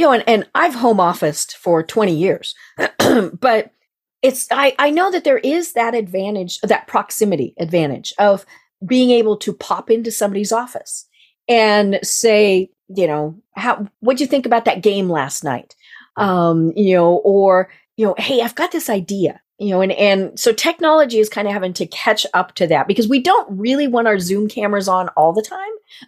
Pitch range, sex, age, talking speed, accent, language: 195-260 Hz, female, 40-59, 195 wpm, American, English